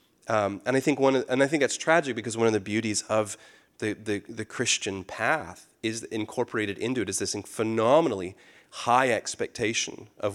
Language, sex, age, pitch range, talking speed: English, male, 30-49, 95-115 Hz, 185 wpm